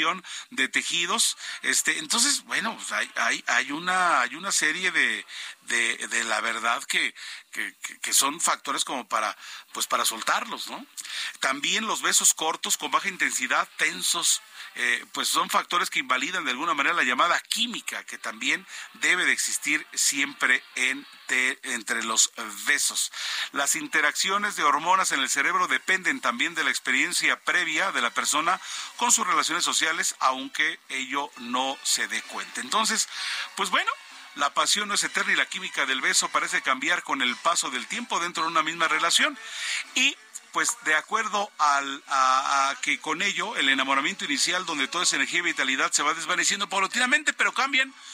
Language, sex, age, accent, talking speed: Spanish, male, 40-59, Mexican, 170 wpm